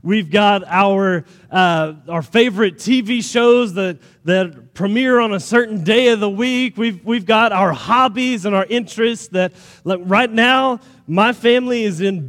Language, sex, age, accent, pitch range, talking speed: English, male, 30-49, American, 180-230 Hz, 165 wpm